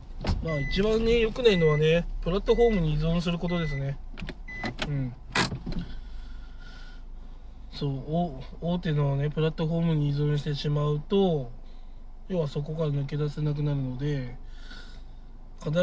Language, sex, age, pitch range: Japanese, male, 20-39, 130-160 Hz